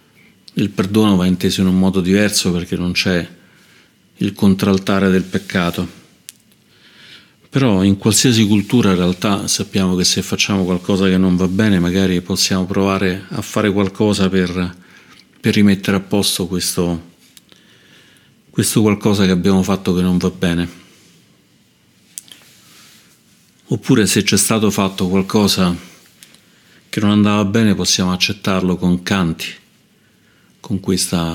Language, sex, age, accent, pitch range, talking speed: Italian, male, 40-59, native, 90-100 Hz, 130 wpm